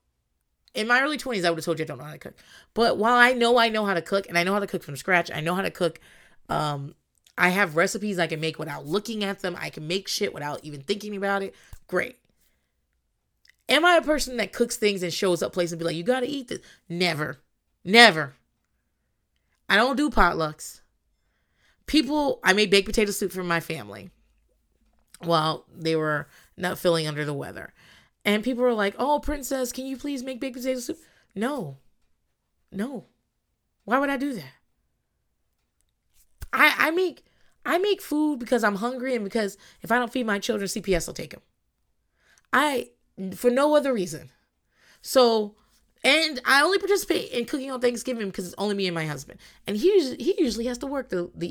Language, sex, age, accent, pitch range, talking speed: English, female, 30-49, American, 165-250 Hz, 200 wpm